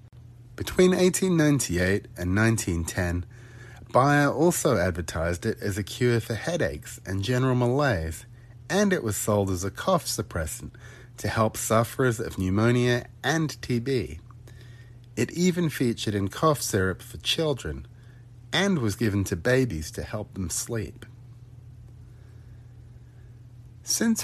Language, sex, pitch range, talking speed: English, male, 100-120 Hz, 120 wpm